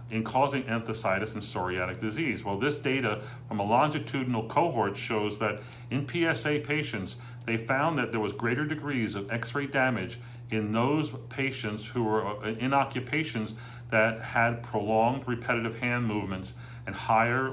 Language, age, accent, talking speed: English, 50-69, American, 145 wpm